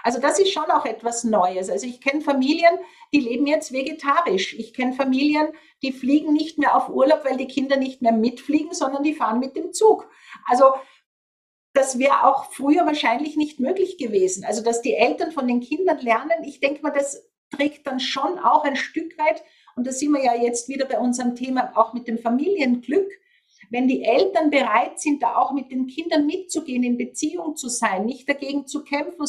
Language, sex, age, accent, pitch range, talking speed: German, female, 50-69, Austrian, 245-310 Hz, 200 wpm